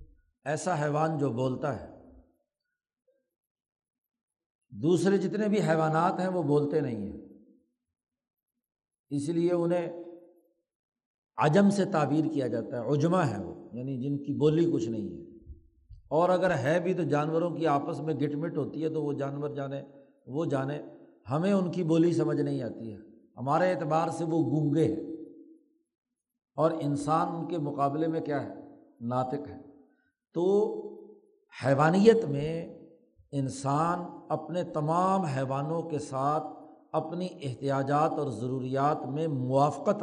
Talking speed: 135 wpm